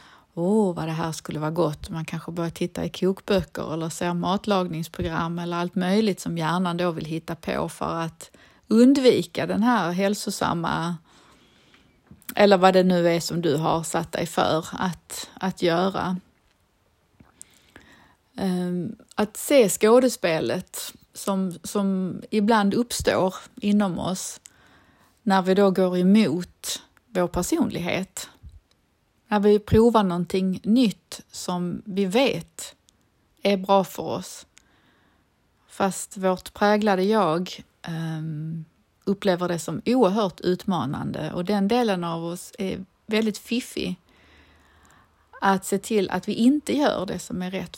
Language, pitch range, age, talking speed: Swedish, 170-210 Hz, 30-49, 125 wpm